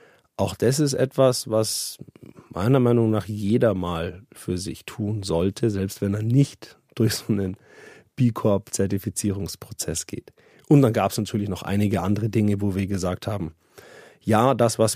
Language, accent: German, German